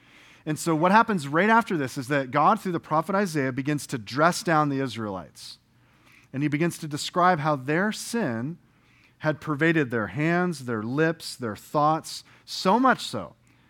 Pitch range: 125-160 Hz